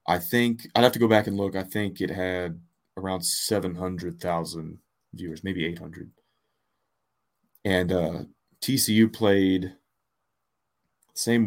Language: English